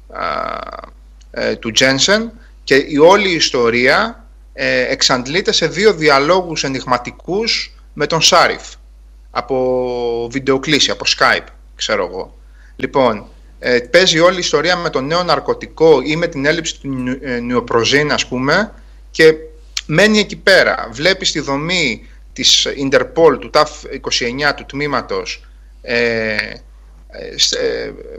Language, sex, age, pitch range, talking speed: Greek, male, 30-49, 125-180 Hz, 115 wpm